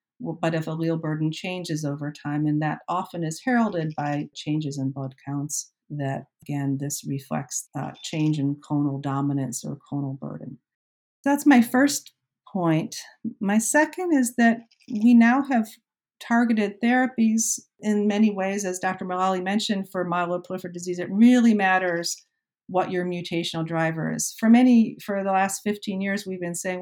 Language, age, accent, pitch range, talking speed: English, 50-69, American, 160-205 Hz, 155 wpm